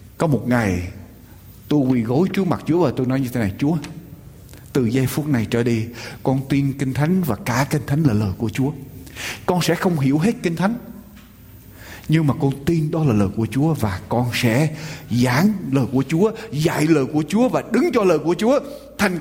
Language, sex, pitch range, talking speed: Vietnamese, male, 115-185 Hz, 210 wpm